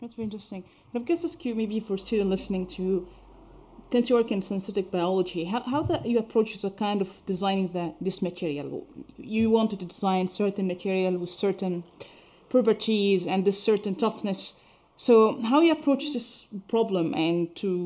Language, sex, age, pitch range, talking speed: English, female, 30-49, 135-215 Hz, 165 wpm